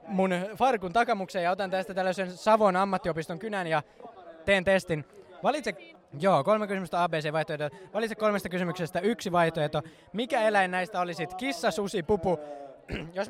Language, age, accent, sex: Finnish, 20-39, native, male